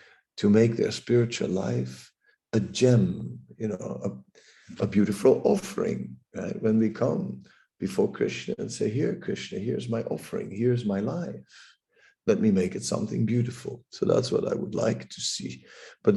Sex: male